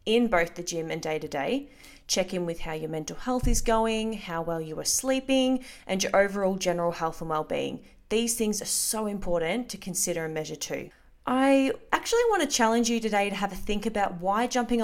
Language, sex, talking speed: English, female, 205 wpm